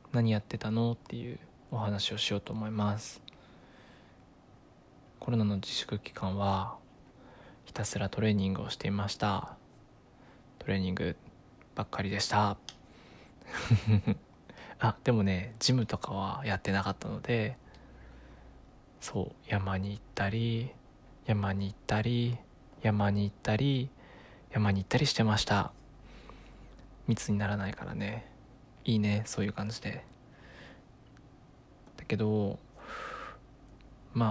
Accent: native